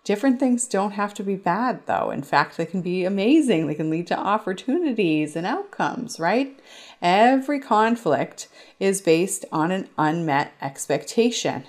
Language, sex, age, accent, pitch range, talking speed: English, female, 30-49, American, 155-210 Hz, 155 wpm